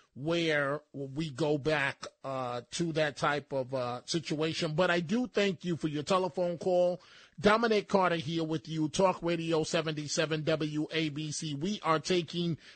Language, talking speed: English, 150 wpm